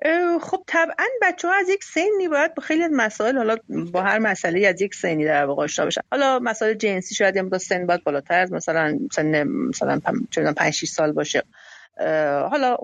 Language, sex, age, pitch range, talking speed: Persian, female, 40-59, 185-275 Hz, 175 wpm